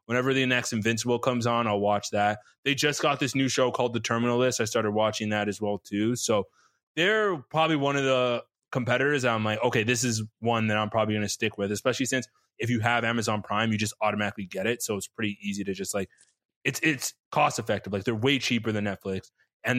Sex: male